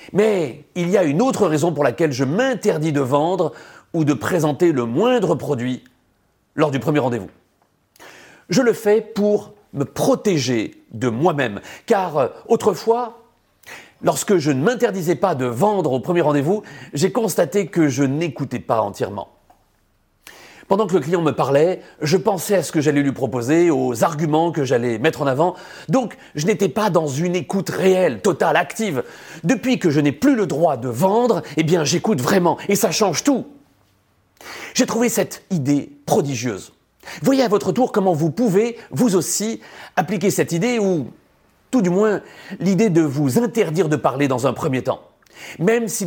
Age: 40-59